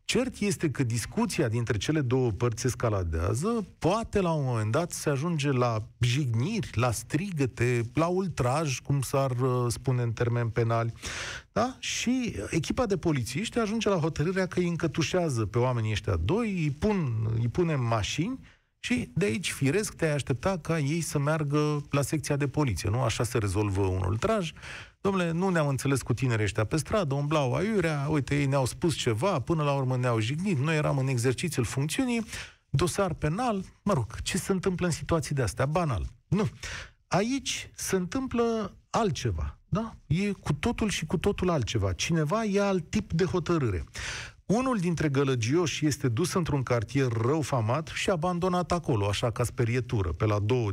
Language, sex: Romanian, male